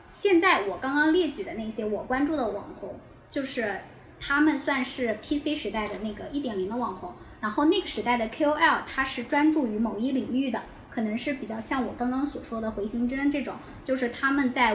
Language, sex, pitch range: Chinese, male, 210-275 Hz